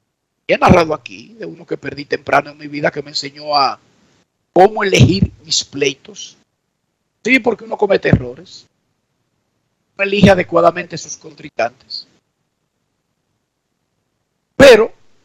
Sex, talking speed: male, 120 wpm